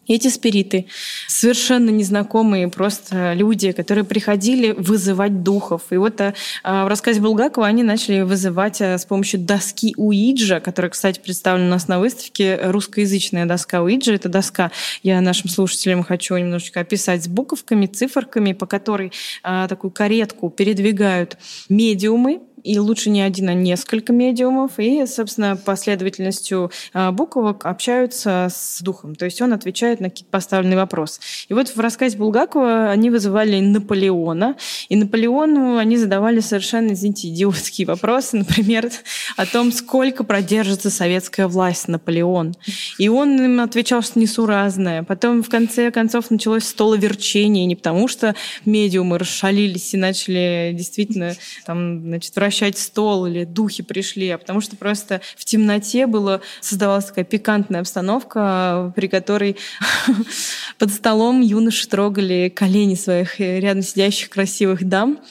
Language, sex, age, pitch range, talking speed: English, female, 20-39, 185-225 Hz, 130 wpm